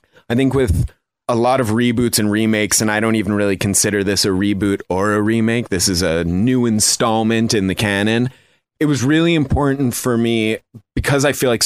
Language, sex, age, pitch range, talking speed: English, male, 20-39, 100-125 Hz, 200 wpm